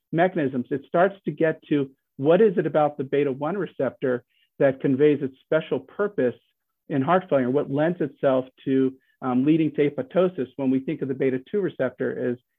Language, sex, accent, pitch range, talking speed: English, male, American, 130-160 Hz, 175 wpm